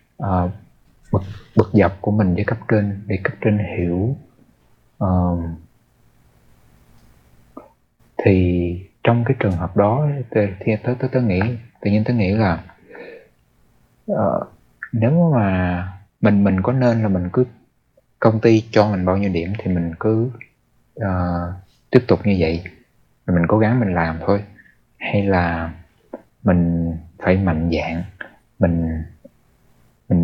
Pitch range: 85-110 Hz